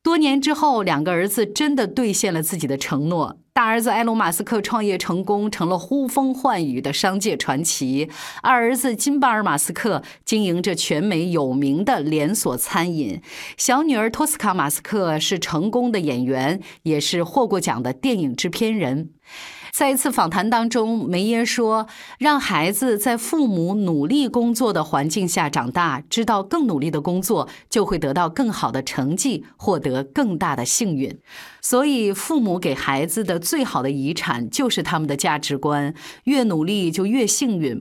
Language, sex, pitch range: Chinese, female, 155-235 Hz